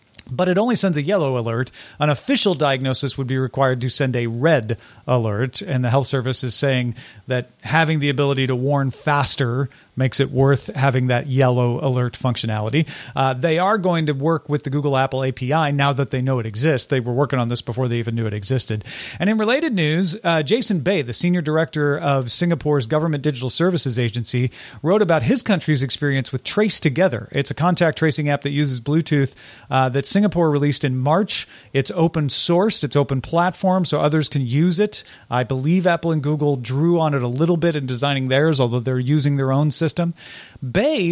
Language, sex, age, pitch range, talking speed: English, male, 40-59, 130-170 Hz, 200 wpm